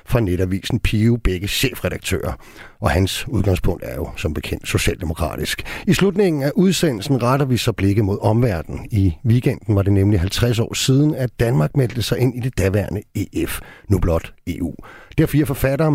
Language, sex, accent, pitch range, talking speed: Danish, male, native, 100-145 Hz, 175 wpm